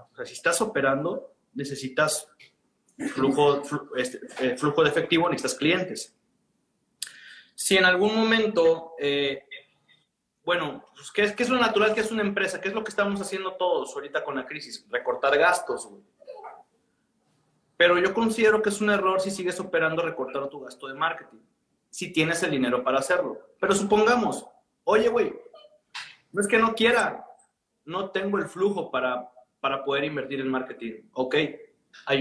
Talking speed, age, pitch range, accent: 160 wpm, 30-49, 140-205 Hz, Mexican